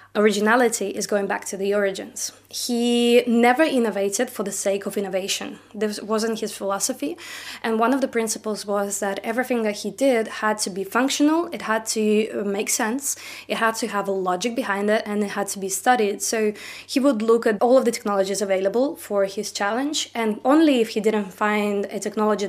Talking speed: 195 wpm